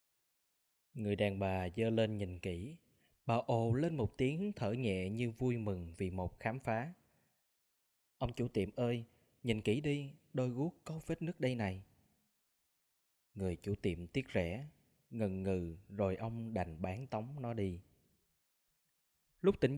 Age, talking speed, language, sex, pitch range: 20-39, 155 wpm, Vietnamese, male, 95-130 Hz